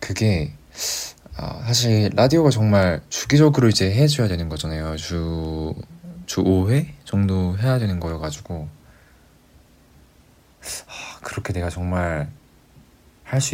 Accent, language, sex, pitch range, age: native, Korean, male, 80-115 Hz, 20-39